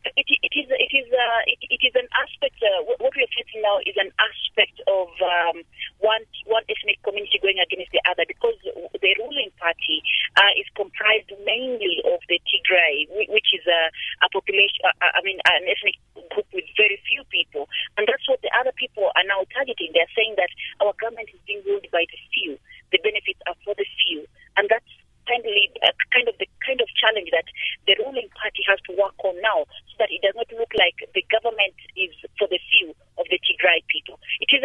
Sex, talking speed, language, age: female, 205 wpm, English, 40-59